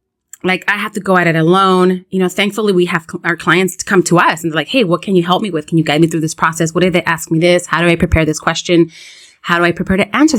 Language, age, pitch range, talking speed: English, 30-49, 170-220 Hz, 320 wpm